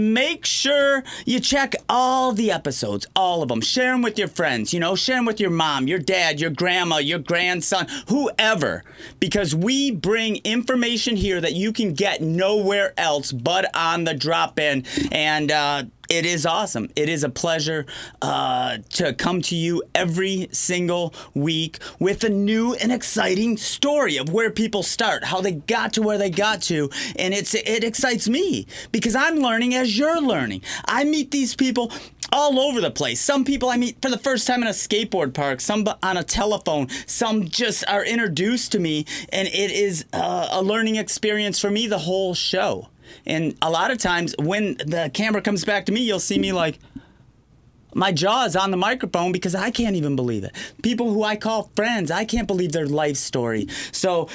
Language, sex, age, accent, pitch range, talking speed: English, male, 30-49, American, 165-225 Hz, 190 wpm